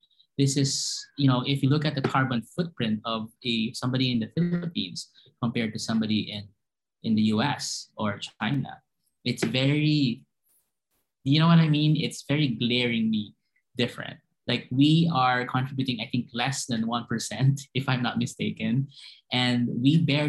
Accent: Filipino